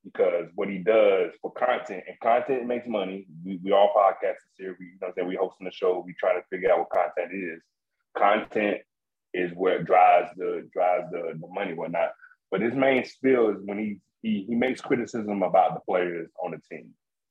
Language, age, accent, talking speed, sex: English, 30-49, American, 210 wpm, male